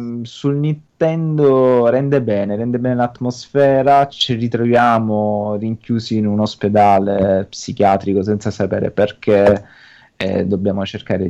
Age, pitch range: 20-39, 100-120 Hz